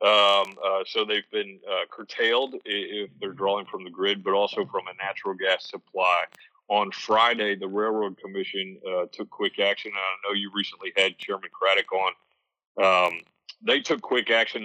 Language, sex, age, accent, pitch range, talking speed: English, male, 40-59, American, 95-110 Hz, 170 wpm